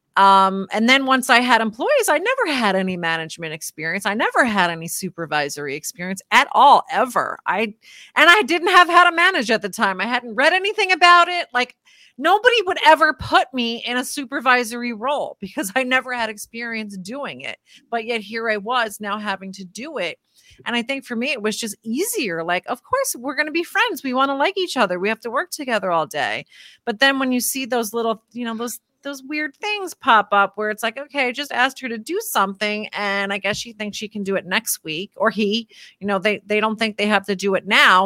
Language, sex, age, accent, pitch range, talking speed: English, female, 30-49, American, 200-275 Hz, 230 wpm